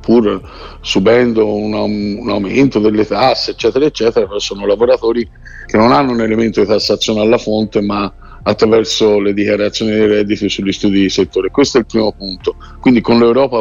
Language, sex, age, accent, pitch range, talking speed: Italian, male, 50-69, native, 105-125 Hz, 170 wpm